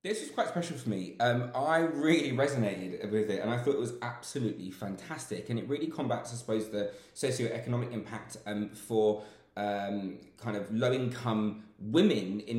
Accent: British